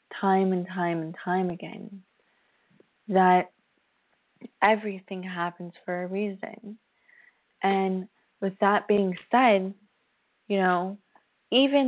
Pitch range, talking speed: 180-215 Hz, 100 wpm